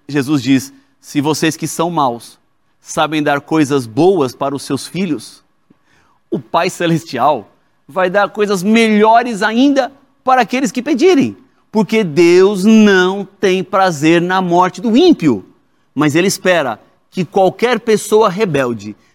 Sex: male